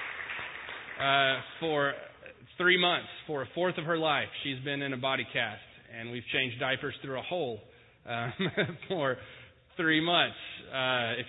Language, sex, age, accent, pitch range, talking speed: English, male, 20-39, American, 130-170 Hz, 155 wpm